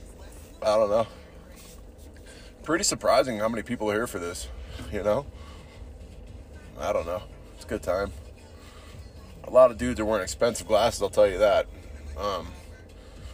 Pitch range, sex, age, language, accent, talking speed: 80-120 Hz, male, 20-39, English, American, 155 wpm